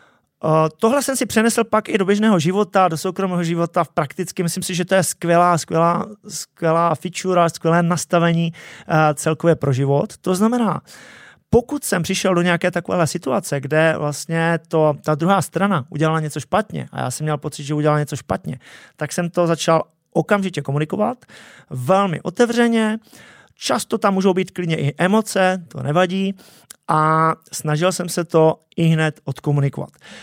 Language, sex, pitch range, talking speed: Czech, male, 155-200 Hz, 165 wpm